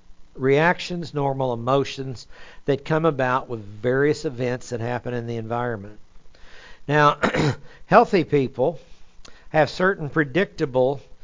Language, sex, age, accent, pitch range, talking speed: English, male, 60-79, American, 125-165 Hz, 105 wpm